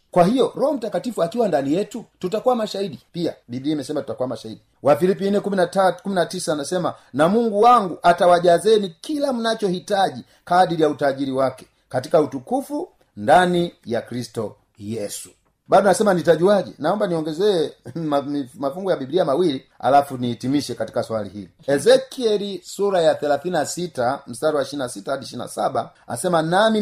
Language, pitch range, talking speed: Swahili, 140-200 Hz, 135 wpm